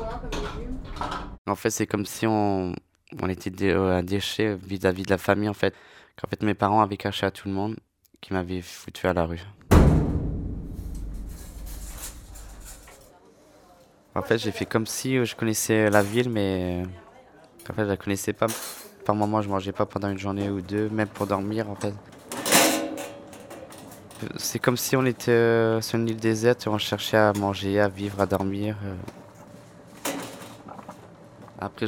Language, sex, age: French, male, 20-39